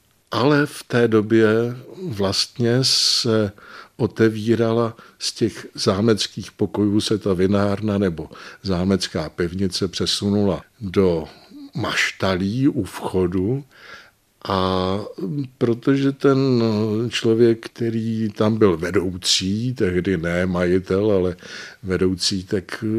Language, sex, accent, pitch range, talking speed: Czech, male, native, 95-115 Hz, 95 wpm